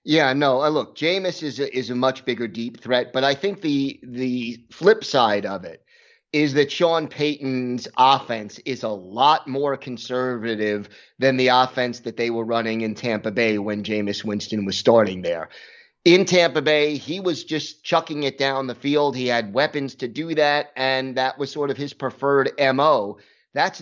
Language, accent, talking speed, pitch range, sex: English, American, 180 wpm, 130-165 Hz, male